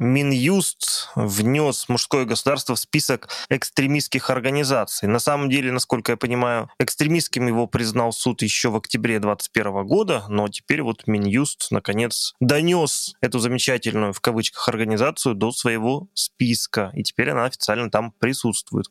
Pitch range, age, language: 110-145 Hz, 20-39, Russian